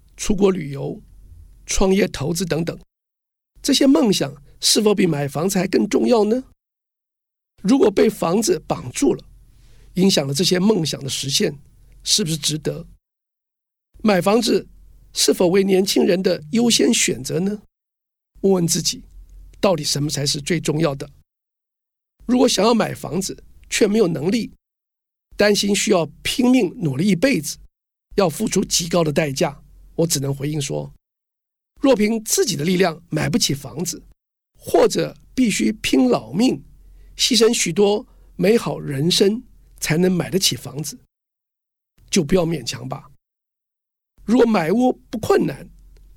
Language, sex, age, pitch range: Chinese, male, 50-69, 150-215 Hz